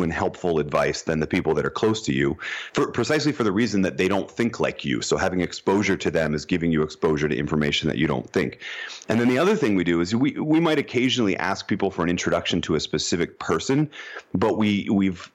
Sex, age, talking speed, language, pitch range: male, 30-49, 240 wpm, English, 85-100 Hz